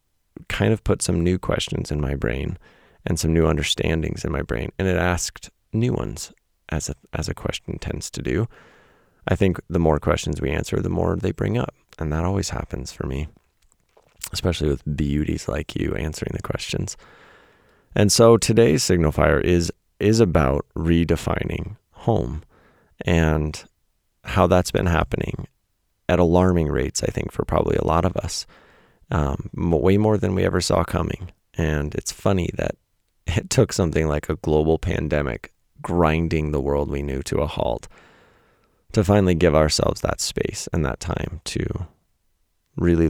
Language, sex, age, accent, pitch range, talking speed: English, male, 30-49, American, 75-90 Hz, 165 wpm